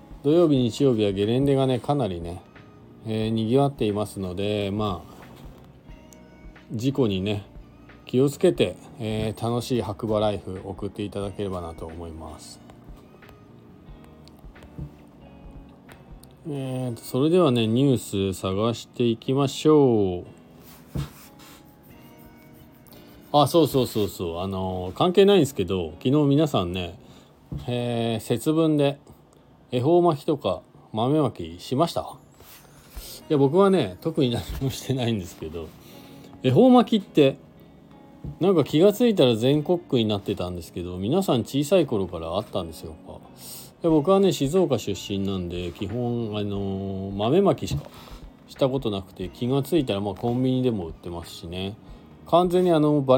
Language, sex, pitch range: Japanese, male, 90-140 Hz